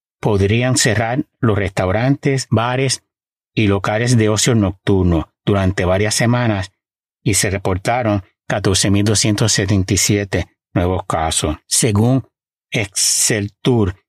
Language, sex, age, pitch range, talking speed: Spanish, male, 60-79, 95-120 Hz, 90 wpm